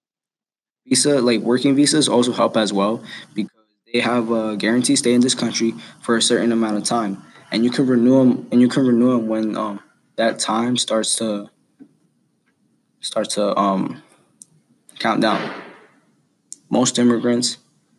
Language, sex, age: English, male, 20-39